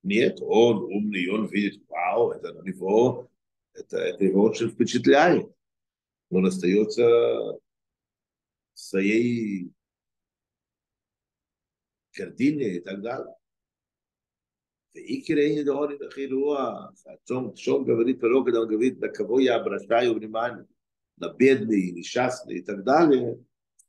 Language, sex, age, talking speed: Russian, male, 50-69, 100 wpm